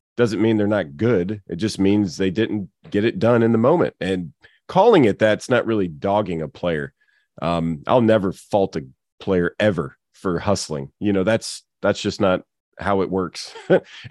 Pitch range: 95-125 Hz